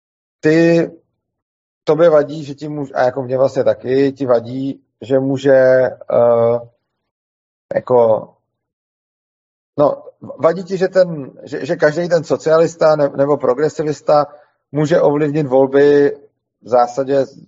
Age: 40-59